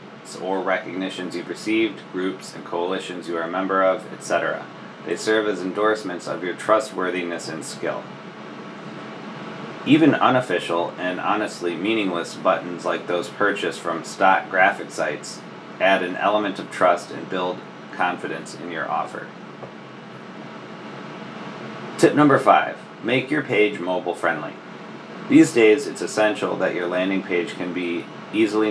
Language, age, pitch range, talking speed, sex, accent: English, 30-49, 85-100 Hz, 135 wpm, male, American